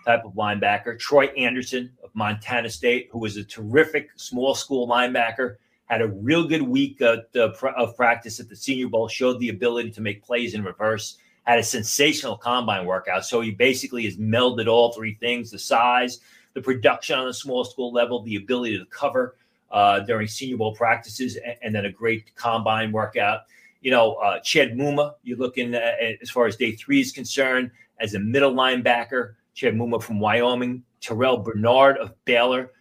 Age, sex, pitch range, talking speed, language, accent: 30-49, male, 110-130 Hz, 185 wpm, English, American